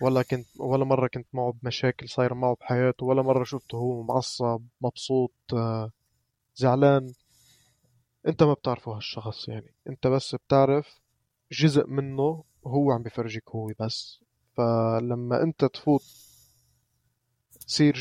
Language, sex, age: Arabic, male, 20-39